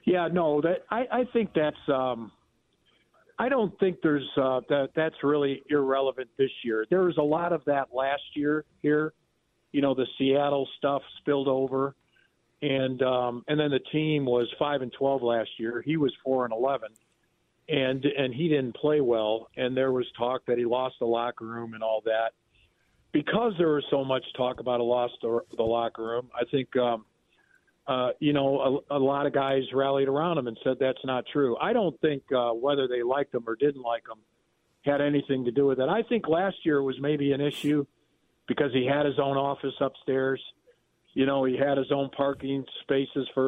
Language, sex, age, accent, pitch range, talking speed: English, male, 50-69, American, 125-145 Hz, 200 wpm